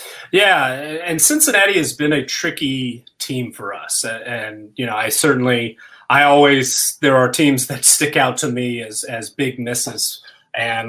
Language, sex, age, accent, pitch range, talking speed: English, male, 30-49, American, 115-135 Hz, 165 wpm